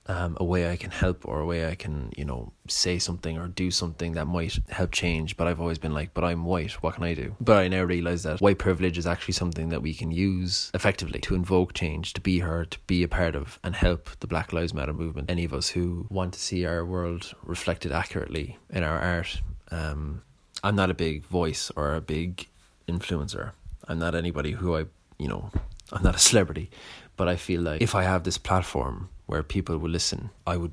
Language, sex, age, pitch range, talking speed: English, male, 20-39, 80-95 Hz, 230 wpm